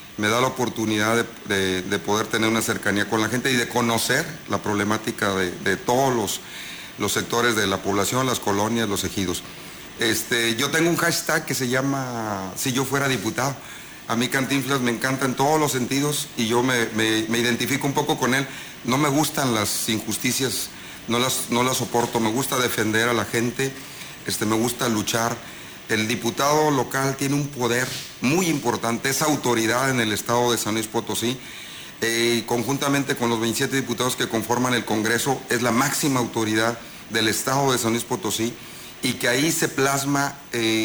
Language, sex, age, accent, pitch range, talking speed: Spanish, male, 50-69, Mexican, 115-135 Hz, 180 wpm